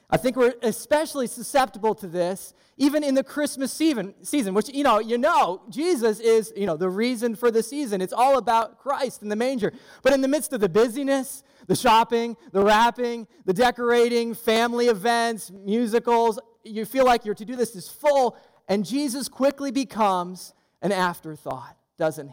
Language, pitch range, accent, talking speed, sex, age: English, 190-245 Hz, American, 170 wpm, male, 20-39